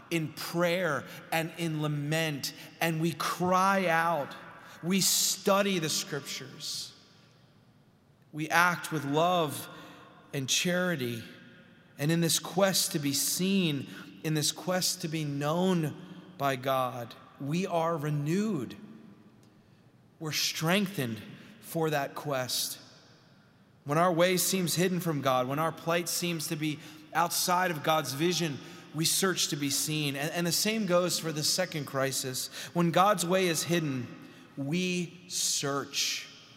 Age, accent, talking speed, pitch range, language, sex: 30-49, American, 130 wpm, 145-180 Hz, English, male